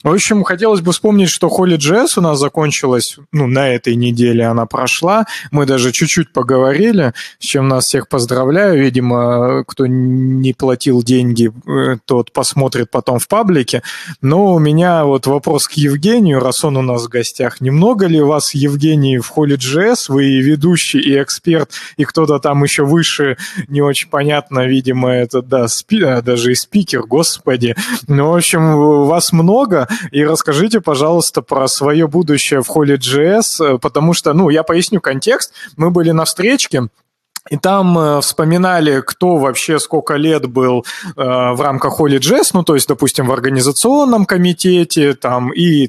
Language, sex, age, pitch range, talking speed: Russian, male, 20-39, 130-165 Hz, 155 wpm